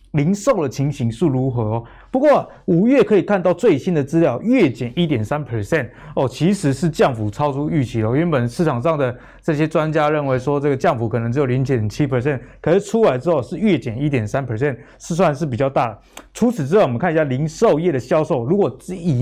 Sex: male